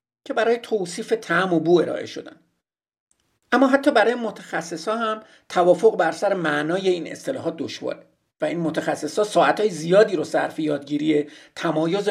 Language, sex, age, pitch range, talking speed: Persian, male, 50-69, 155-220 Hz, 145 wpm